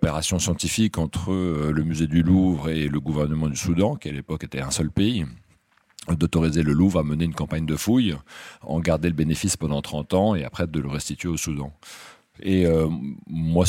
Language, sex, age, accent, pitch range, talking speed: French, male, 40-59, French, 75-90 Hz, 195 wpm